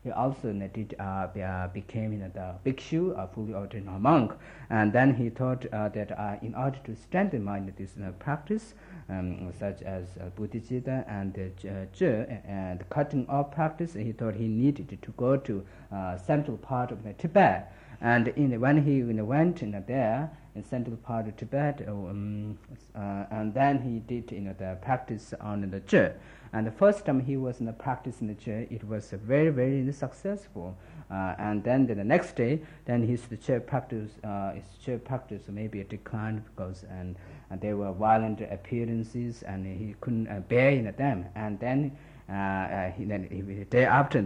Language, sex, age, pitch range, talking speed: Italian, male, 50-69, 100-130 Hz, 200 wpm